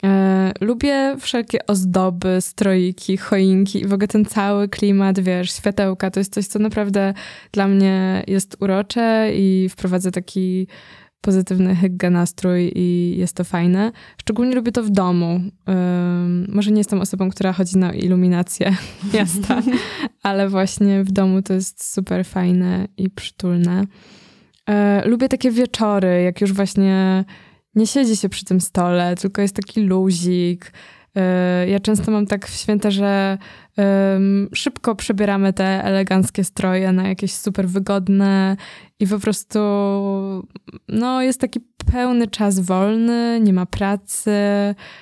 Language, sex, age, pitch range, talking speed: Polish, female, 20-39, 185-210 Hz, 130 wpm